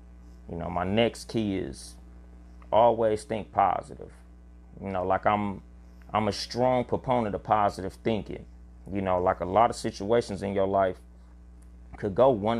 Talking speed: 155 wpm